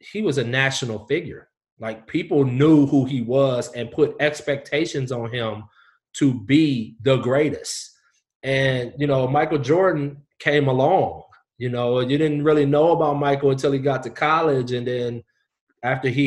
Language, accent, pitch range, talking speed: English, American, 120-145 Hz, 160 wpm